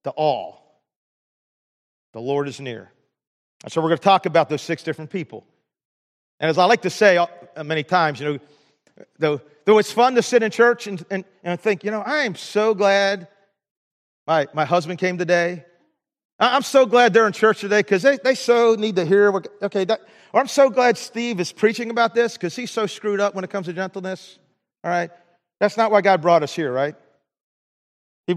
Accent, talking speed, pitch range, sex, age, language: American, 200 wpm, 170-225 Hz, male, 40-59, English